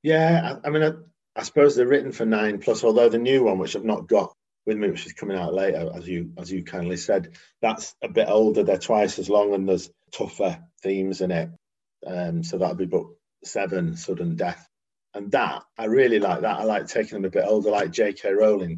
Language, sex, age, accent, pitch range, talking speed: English, male, 40-59, British, 90-120 Hz, 225 wpm